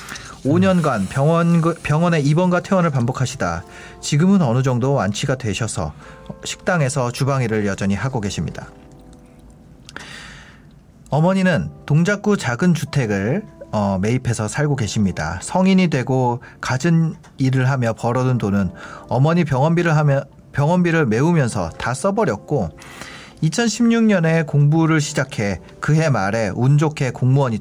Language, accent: Korean, native